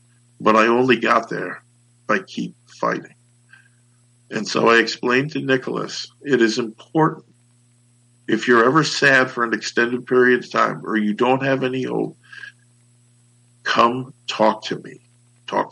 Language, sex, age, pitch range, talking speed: English, male, 50-69, 115-125 Hz, 150 wpm